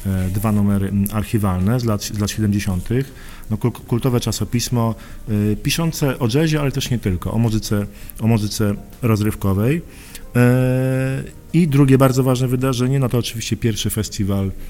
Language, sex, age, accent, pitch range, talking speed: Polish, male, 40-59, native, 100-115 Hz, 140 wpm